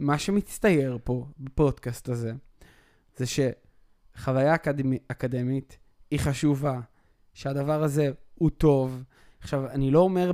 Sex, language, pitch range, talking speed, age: male, Hebrew, 125-155 Hz, 105 wpm, 20-39